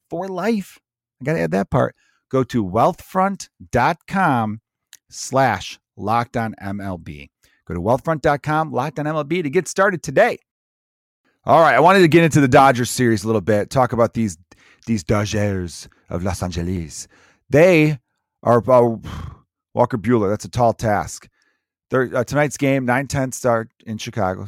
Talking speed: 150 wpm